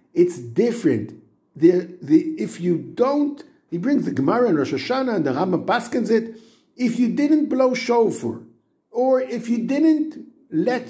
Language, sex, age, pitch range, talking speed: English, male, 50-69, 215-275 Hz, 160 wpm